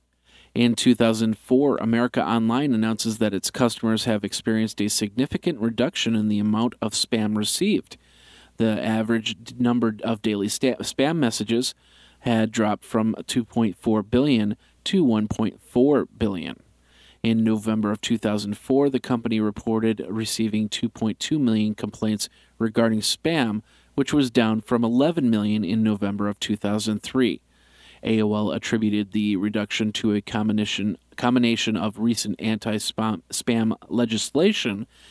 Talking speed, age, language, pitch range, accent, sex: 115 wpm, 40-59, English, 105-115 Hz, American, male